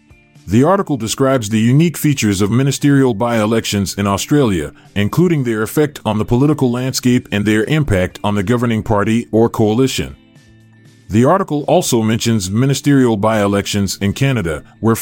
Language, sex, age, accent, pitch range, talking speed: English, male, 30-49, American, 105-140 Hz, 145 wpm